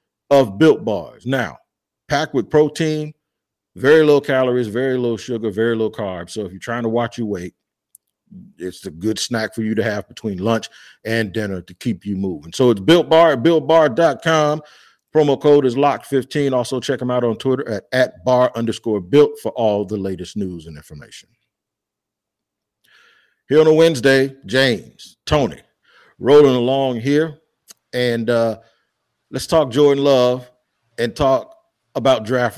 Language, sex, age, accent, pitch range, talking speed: English, male, 50-69, American, 105-130 Hz, 160 wpm